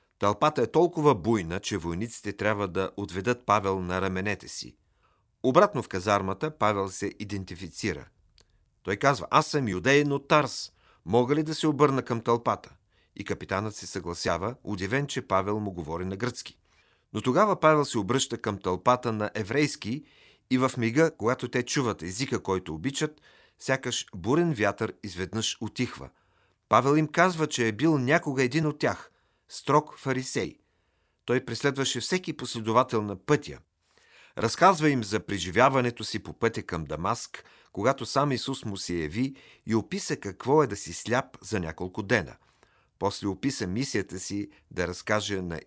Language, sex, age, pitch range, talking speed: Bulgarian, male, 40-59, 100-135 Hz, 155 wpm